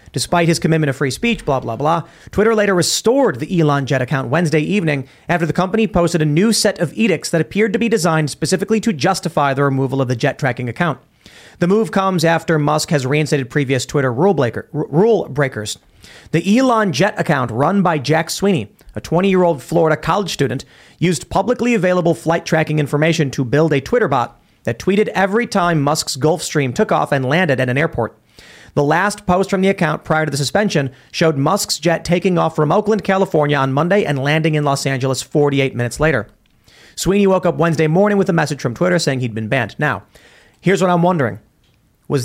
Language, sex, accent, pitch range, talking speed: English, male, American, 140-180 Hz, 200 wpm